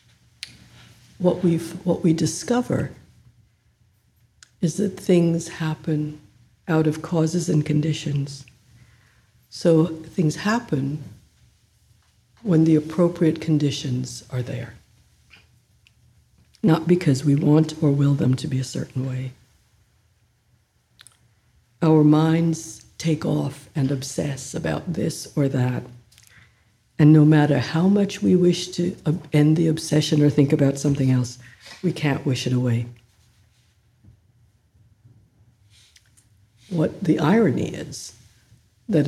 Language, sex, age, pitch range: English, female, 60-79, 115-160 Hz